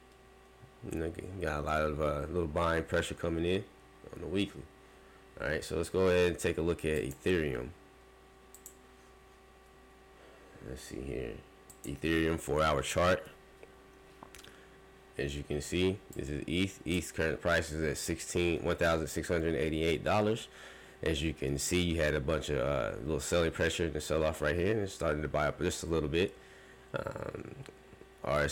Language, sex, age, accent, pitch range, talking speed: English, male, 20-39, American, 75-85 Hz, 165 wpm